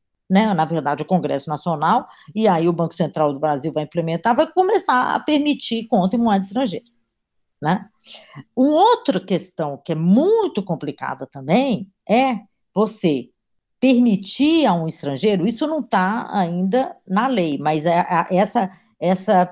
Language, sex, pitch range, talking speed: Portuguese, female, 160-235 Hz, 150 wpm